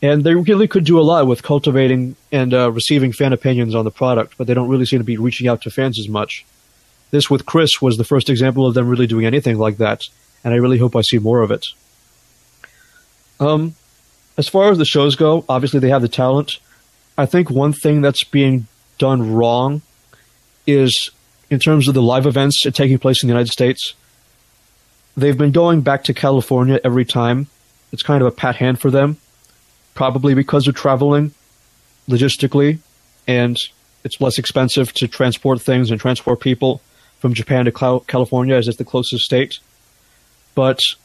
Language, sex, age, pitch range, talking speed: English, male, 30-49, 120-140 Hz, 185 wpm